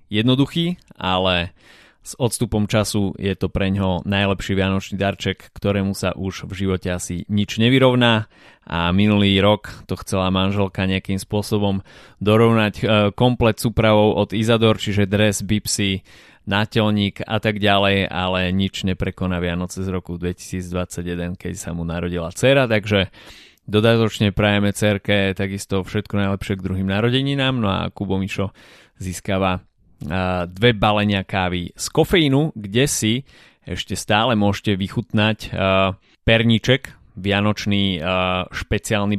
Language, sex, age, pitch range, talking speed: Slovak, male, 20-39, 95-110 Hz, 120 wpm